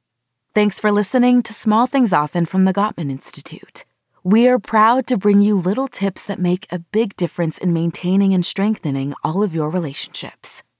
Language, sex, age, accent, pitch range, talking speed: English, female, 30-49, American, 170-220 Hz, 180 wpm